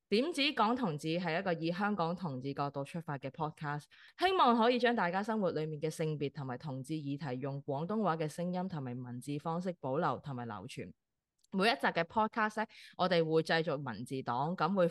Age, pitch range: 20-39, 145-215 Hz